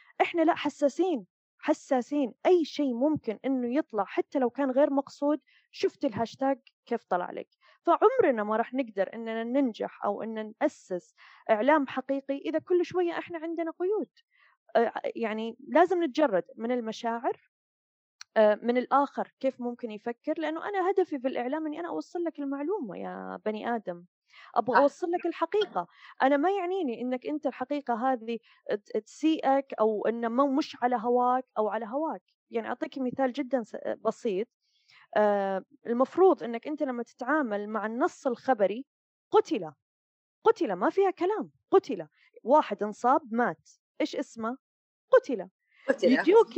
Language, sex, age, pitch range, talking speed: Arabic, female, 20-39, 230-325 Hz, 135 wpm